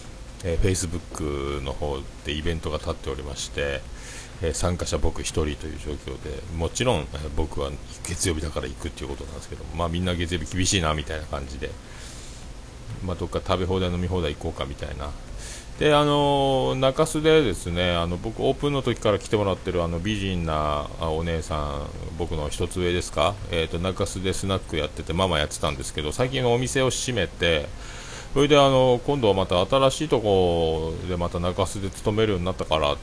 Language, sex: Japanese, male